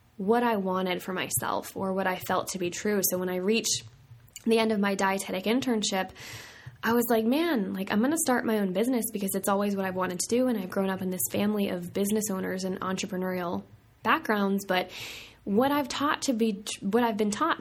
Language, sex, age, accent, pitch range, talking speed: English, female, 10-29, American, 185-230 Hz, 220 wpm